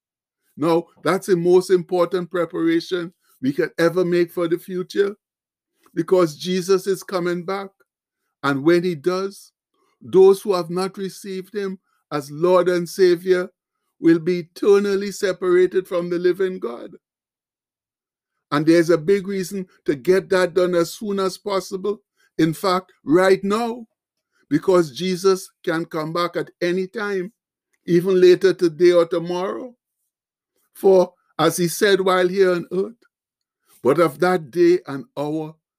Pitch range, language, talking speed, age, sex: 165-190 Hz, English, 140 wpm, 60-79, male